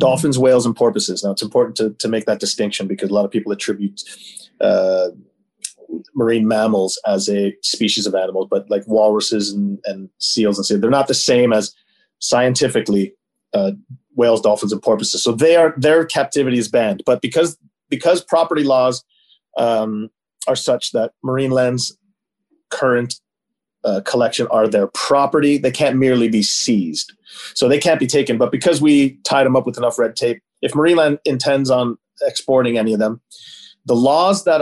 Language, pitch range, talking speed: English, 110-140 Hz, 175 wpm